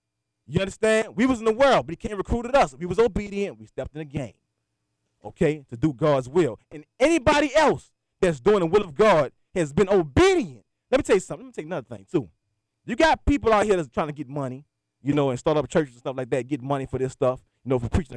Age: 20-39